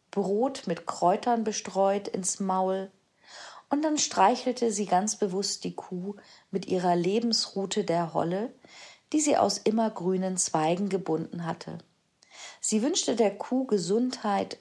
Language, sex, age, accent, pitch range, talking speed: German, female, 40-59, German, 170-230 Hz, 125 wpm